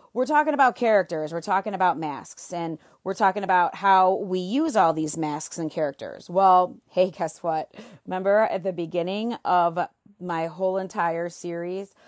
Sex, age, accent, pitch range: female, 30-49, American, 165-190 Hz